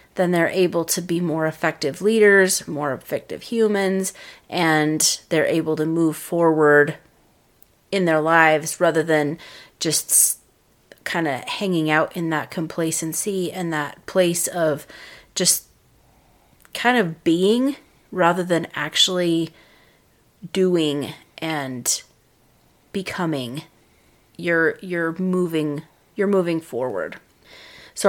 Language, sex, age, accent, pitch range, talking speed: English, female, 30-49, American, 165-195 Hz, 105 wpm